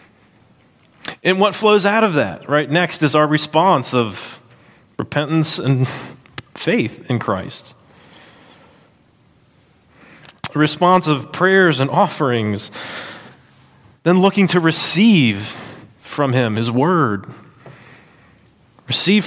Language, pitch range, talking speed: English, 135-185 Hz, 100 wpm